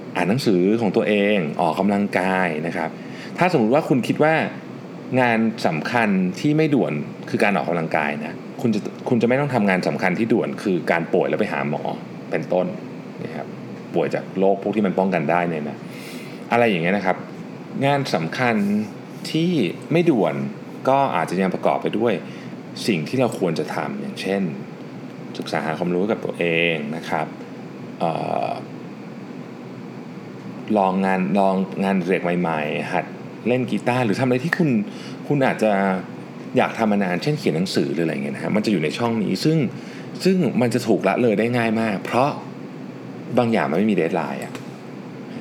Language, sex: Thai, male